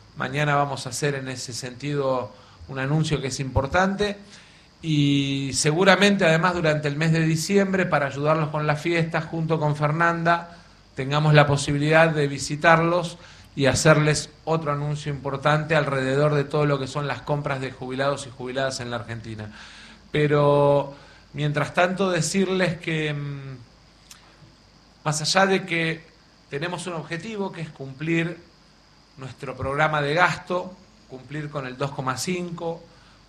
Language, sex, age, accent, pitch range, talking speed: Spanish, male, 40-59, Argentinian, 140-170 Hz, 135 wpm